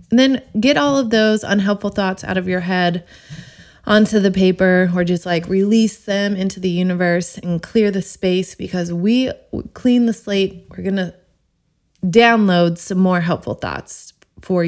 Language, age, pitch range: English, 20-39, 170-210 Hz